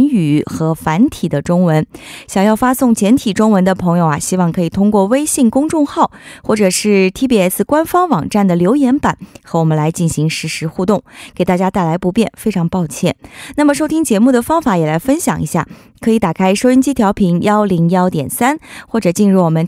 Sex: female